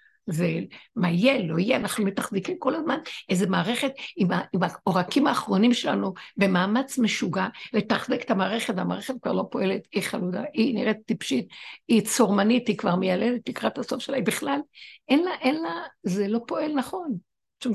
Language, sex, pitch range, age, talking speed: Hebrew, female, 200-265 Hz, 60-79, 155 wpm